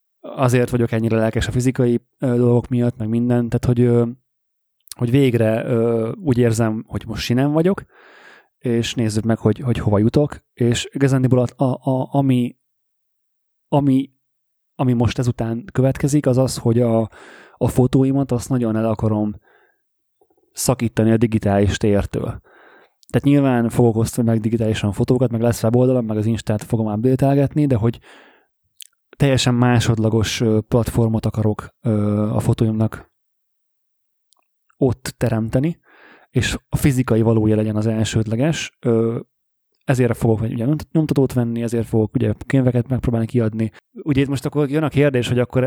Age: 30-49